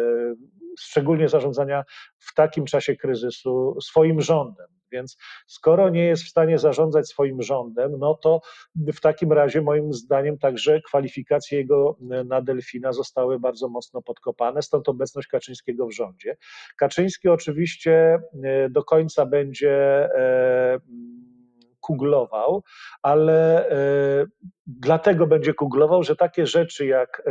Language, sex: Polish, male